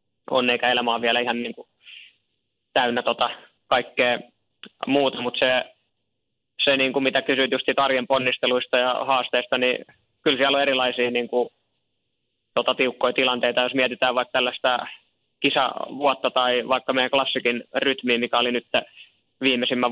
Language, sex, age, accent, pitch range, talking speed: Finnish, male, 20-39, native, 120-130 Hz, 140 wpm